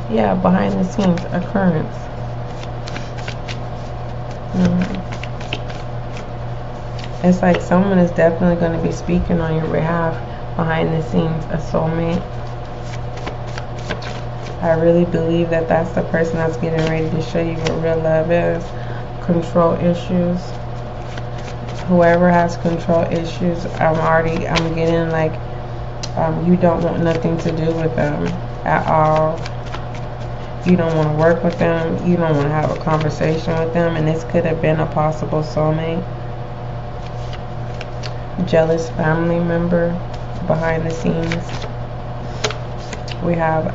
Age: 20-39